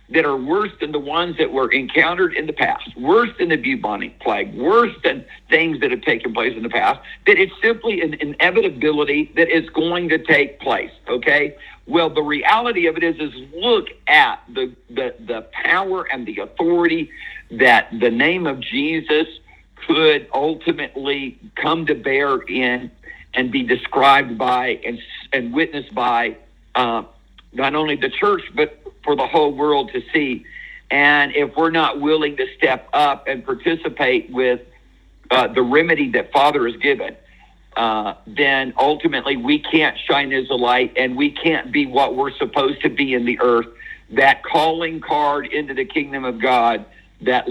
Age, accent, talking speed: 60-79, American, 170 wpm